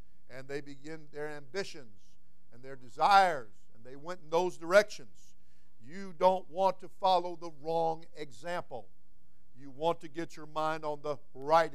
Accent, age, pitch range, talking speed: American, 50-69, 140-195 Hz, 160 wpm